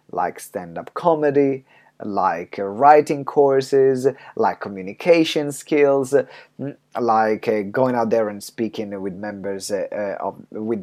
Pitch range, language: 115-165 Hz, English